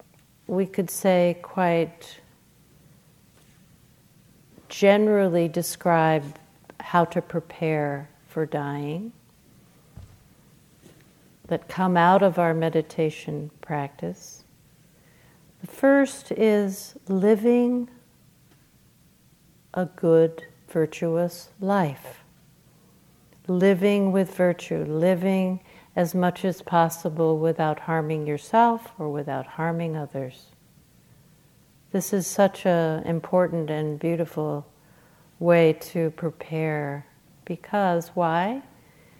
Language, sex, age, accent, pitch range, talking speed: English, female, 50-69, American, 160-185 Hz, 80 wpm